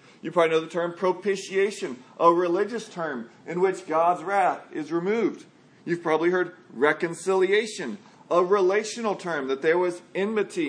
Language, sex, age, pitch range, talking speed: English, male, 40-59, 160-200 Hz, 145 wpm